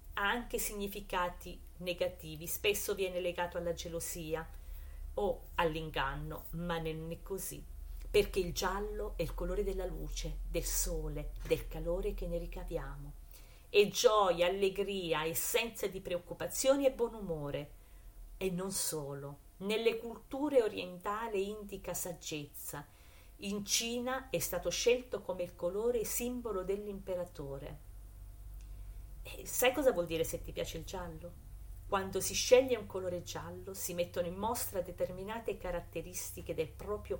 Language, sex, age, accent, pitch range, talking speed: Italian, female, 40-59, native, 150-205 Hz, 130 wpm